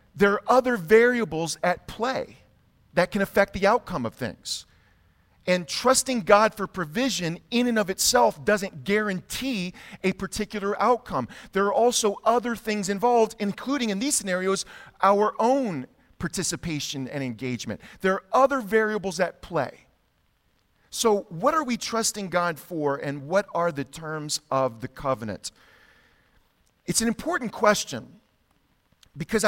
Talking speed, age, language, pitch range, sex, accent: 140 wpm, 40-59, English, 140-210 Hz, male, American